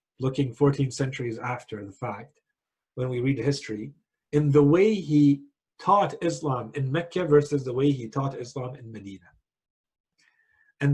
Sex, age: male, 40-59